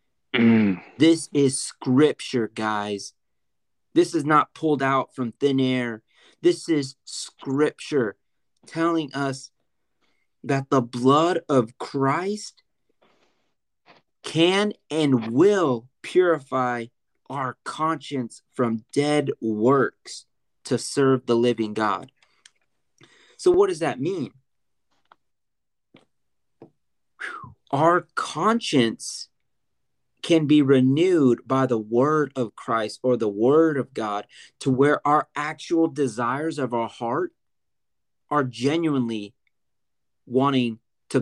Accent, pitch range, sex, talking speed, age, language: American, 120-150 Hz, male, 100 wpm, 30-49, English